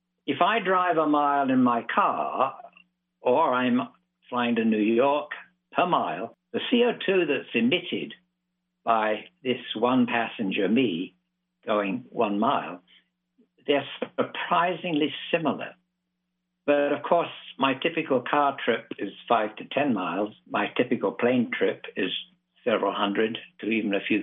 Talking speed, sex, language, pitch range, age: 135 wpm, male, English, 115-180 Hz, 60-79